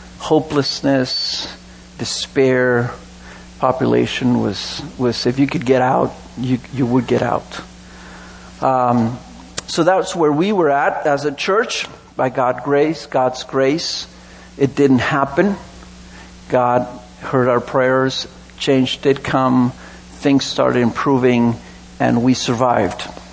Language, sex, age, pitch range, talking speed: English, male, 50-69, 110-140 Hz, 120 wpm